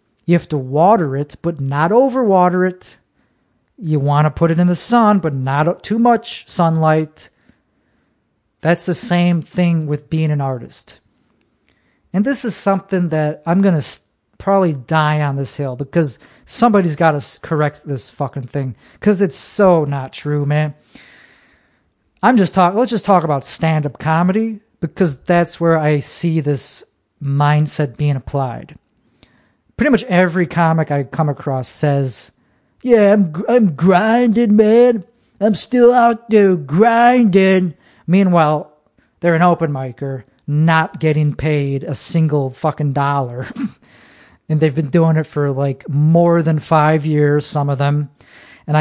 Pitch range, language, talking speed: 145-195 Hz, English, 150 wpm